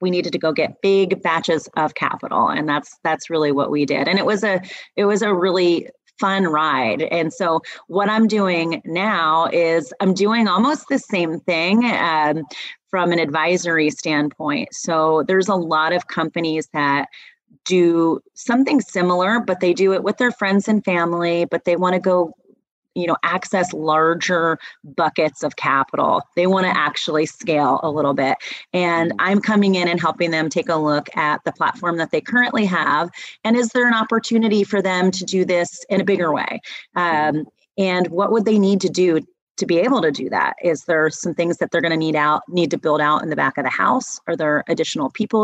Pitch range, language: 160-200 Hz, English